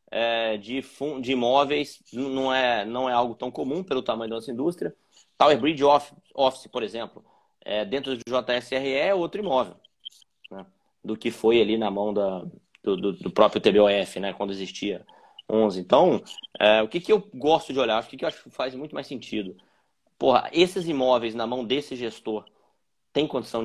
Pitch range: 110-135 Hz